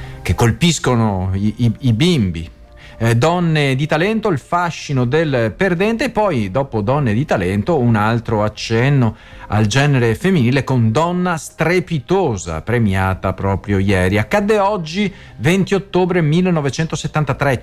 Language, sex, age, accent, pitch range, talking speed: Italian, male, 40-59, native, 110-175 Hz, 125 wpm